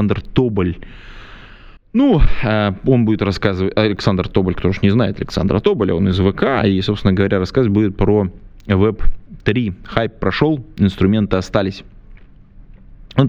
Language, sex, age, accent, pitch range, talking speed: Russian, male, 20-39, native, 95-110 Hz, 135 wpm